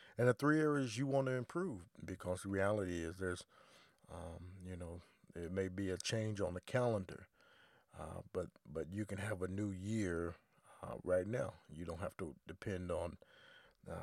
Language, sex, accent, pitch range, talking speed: English, male, American, 90-105 Hz, 185 wpm